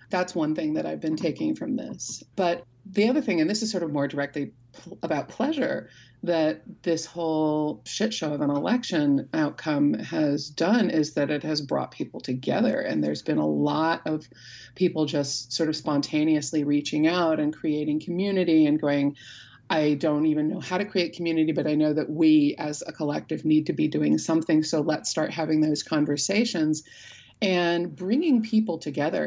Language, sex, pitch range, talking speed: English, female, 150-195 Hz, 180 wpm